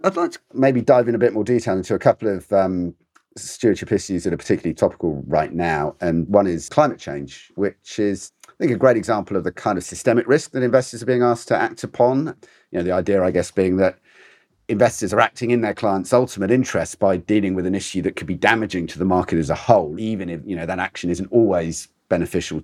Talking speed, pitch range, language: 235 wpm, 85-120 Hz, English